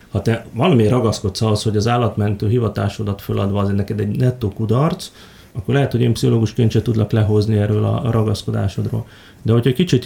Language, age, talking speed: Hungarian, 30-49, 180 wpm